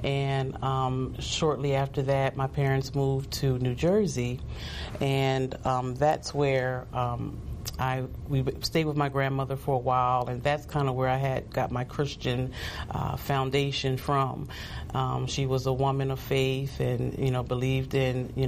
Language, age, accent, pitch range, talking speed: English, 40-59, American, 130-140 Hz, 165 wpm